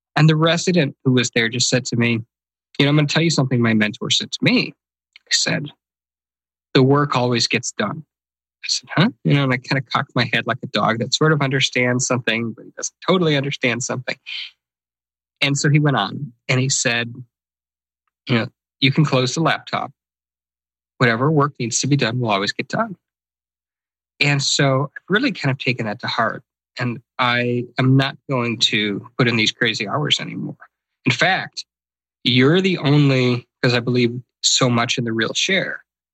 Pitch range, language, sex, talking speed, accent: 110-135 Hz, English, male, 195 wpm, American